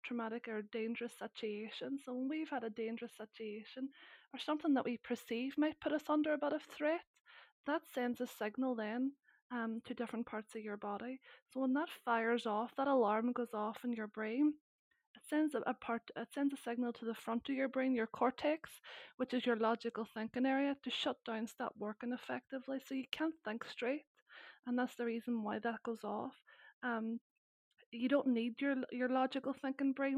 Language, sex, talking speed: English, female, 195 wpm